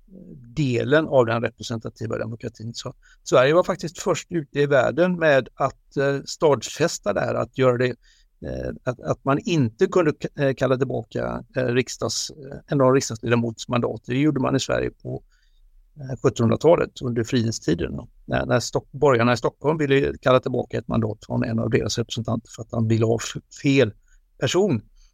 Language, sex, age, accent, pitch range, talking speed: Swedish, male, 60-79, native, 115-140 Hz, 145 wpm